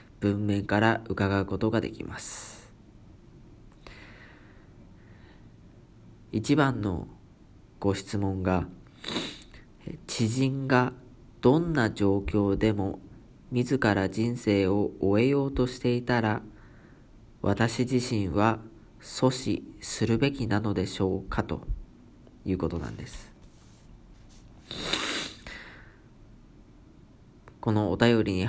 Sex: male